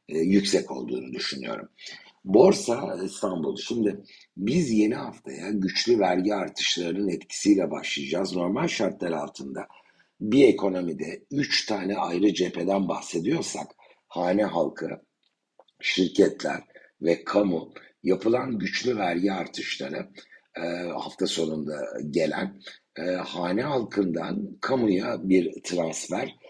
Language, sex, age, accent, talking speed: Turkish, male, 60-79, native, 100 wpm